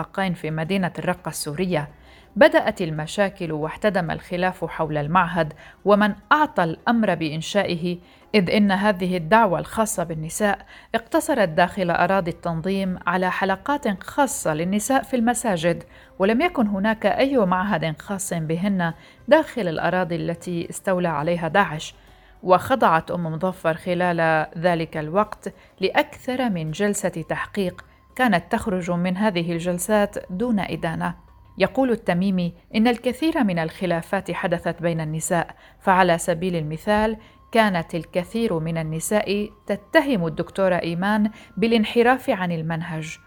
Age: 40-59